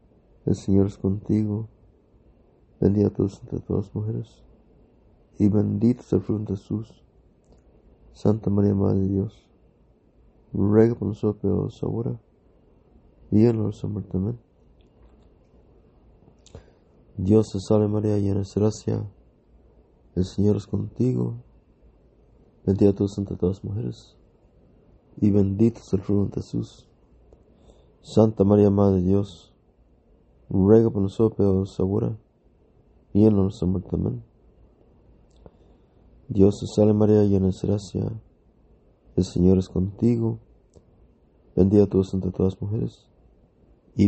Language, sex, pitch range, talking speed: English, male, 95-105 Hz, 115 wpm